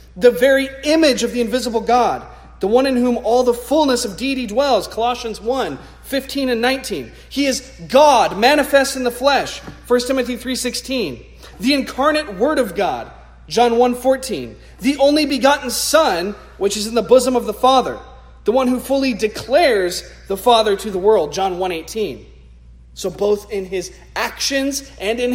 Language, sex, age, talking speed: English, male, 40-59, 170 wpm